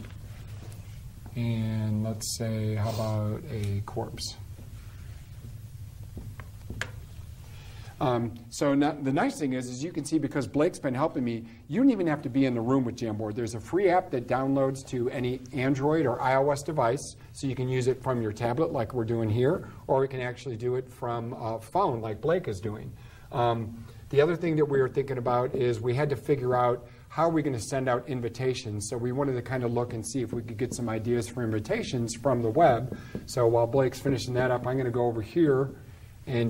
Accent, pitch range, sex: American, 110-130 Hz, male